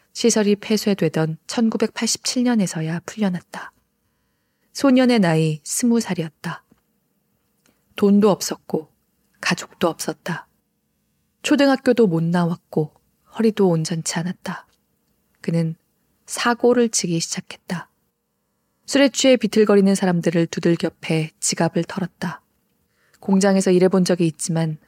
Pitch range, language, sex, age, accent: 165-215 Hz, Korean, female, 20-39, native